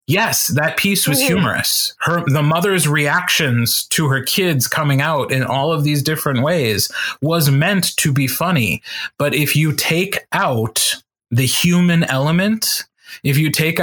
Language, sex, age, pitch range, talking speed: English, male, 20-39, 135-170 Hz, 150 wpm